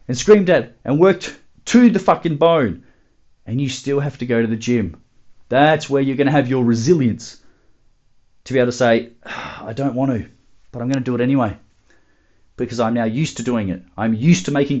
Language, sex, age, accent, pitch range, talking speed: English, male, 30-49, Australian, 110-170 Hz, 205 wpm